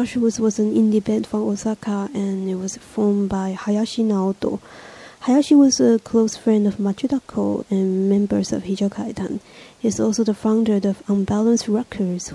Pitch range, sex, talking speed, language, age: 190-220 Hz, female, 150 wpm, English, 20-39